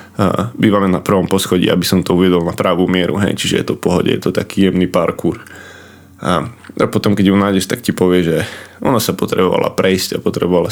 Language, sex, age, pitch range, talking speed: Slovak, male, 20-39, 90-100 Hz, 215 wpm